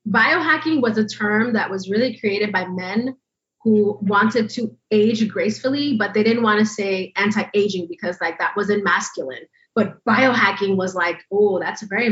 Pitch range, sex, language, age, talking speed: 190-230 Hz, female, English, 30-49, 170 wpm